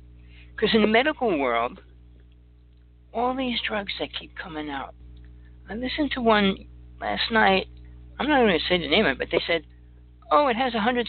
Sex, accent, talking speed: male, American, 190 wpm